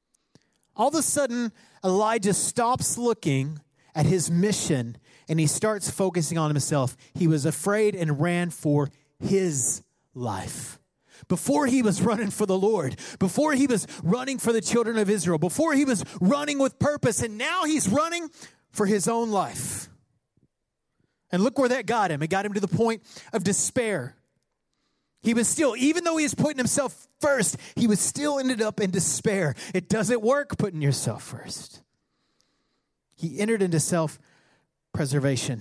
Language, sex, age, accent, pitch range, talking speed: English, male, 30-49, American, 165-260 Hz, 160 wpm